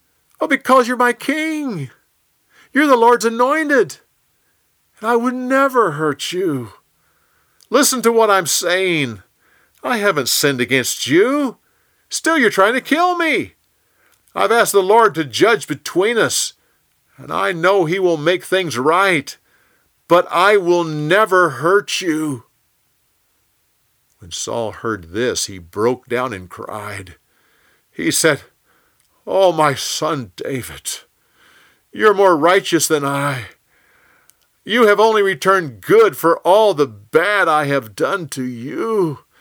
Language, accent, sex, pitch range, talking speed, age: English, American, male, 150-240 Hz, 130 wpm, 50-69